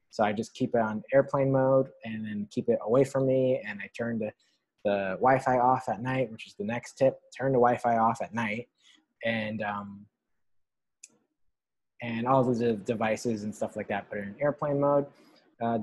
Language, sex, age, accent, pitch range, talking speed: English, male, 20-39, American, 115-135 Hz, 195 wpm